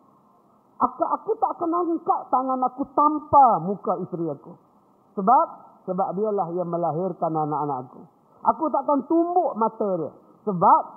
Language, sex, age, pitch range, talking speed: Malay, male, 50-69, 145-230 Hz, 135 wpm